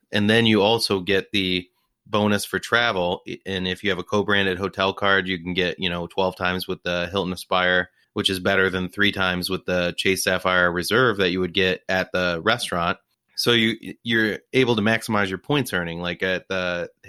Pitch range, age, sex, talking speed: 90-100 Hz, 30-49, male, 205 wpm